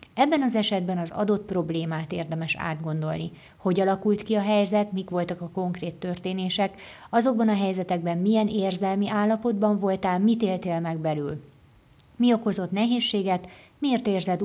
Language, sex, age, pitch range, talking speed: Hungarian, female, 30-49, 170-210 Hz, 140 wpm